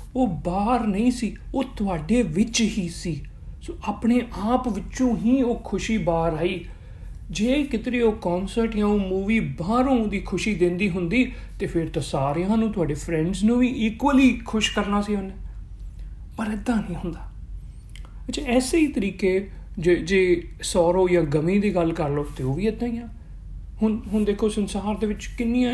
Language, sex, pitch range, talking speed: Punjabi, male, 170-225 Hz, 170 wpm